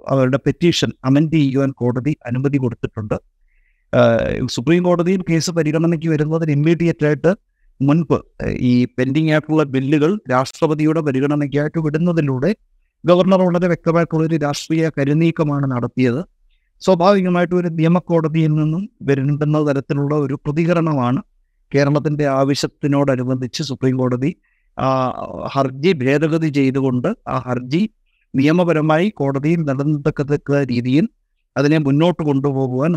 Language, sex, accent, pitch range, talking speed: Malayalam, male, native, 135-165 Hz, 100 wpm